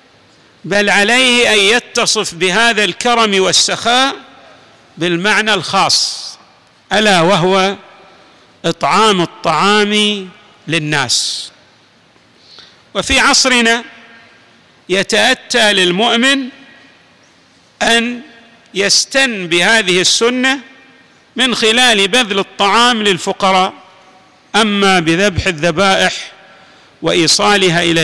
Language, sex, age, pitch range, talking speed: Arabic, male, 50-69, 185-235 Hz, 70 wpm